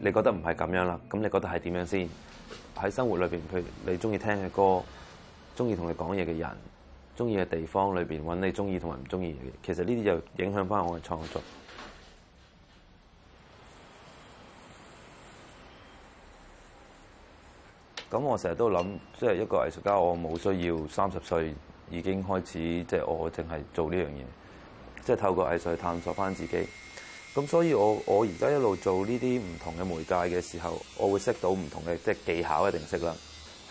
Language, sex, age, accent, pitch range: Chinese, male, 20-39, native, 85-95 Hz